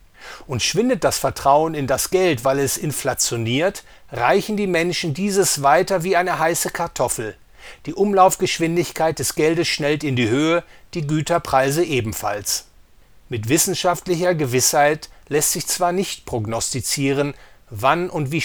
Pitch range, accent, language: 135-175 Hz, German, English